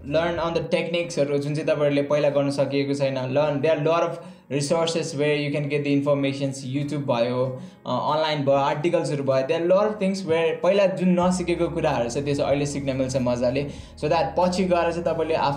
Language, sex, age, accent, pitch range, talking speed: English, male, 20-39, Indian, 140-175 Hz, 175 wpm